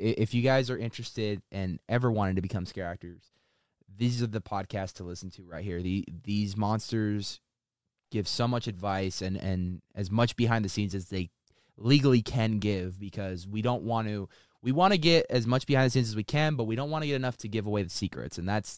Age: 20-39